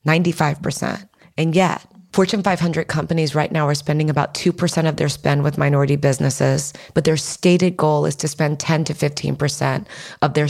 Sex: female